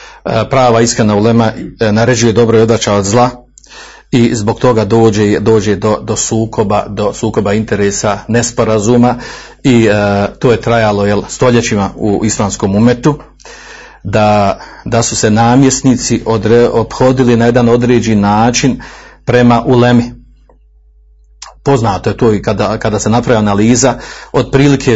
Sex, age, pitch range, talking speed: male, 40-59, 110-130 Hz, 125 wpm